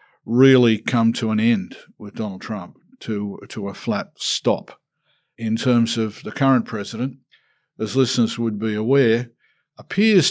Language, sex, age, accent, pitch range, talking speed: English, male, 50-69, Australian, 110-130 Hz, 145 wpm